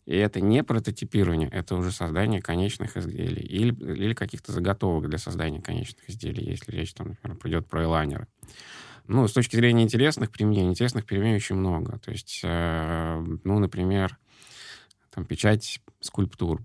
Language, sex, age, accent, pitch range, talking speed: Russian, male, 20-39, native, 85-110 Hz, 150 wpm